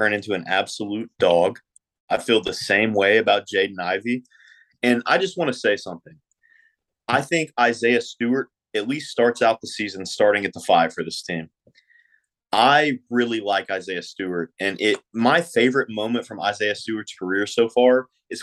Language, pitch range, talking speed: English, 105-130 Hz, 175 wpm